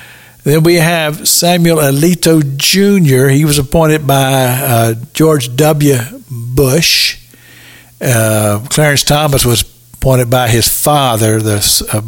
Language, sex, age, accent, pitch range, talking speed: English, male, 60-79, American, 120-155 Hz, 120 wpm